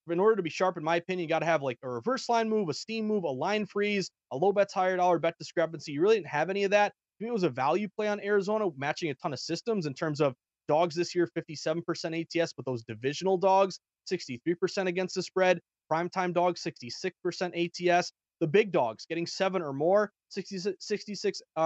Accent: American